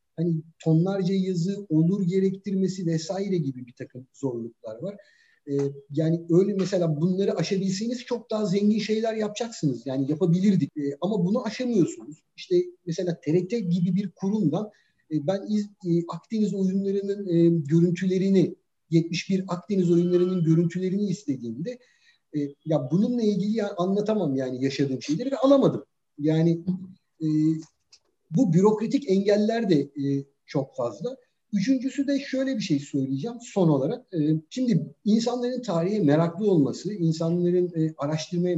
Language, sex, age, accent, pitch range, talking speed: Turkish, male, 50-69, native, 155-200 Hz, 125 wpm